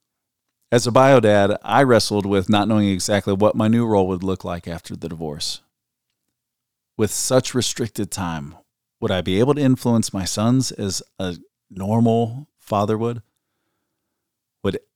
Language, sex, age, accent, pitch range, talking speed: English, male, 40-59, American, 95-120 Hz, 150 wpm